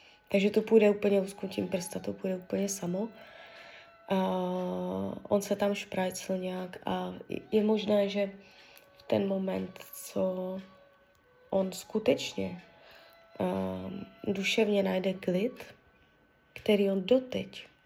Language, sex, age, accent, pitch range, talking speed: Czech, female, 20-39, native, 170-205 Hz, 105 wpm